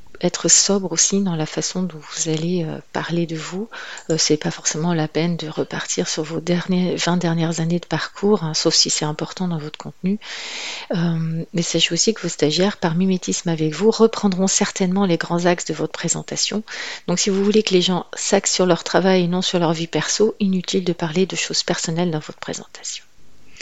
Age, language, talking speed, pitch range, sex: 40-59, French, 205 wpm, 170-205 Hz, female